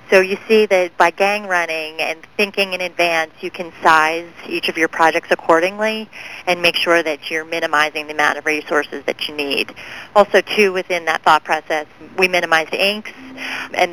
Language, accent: English, American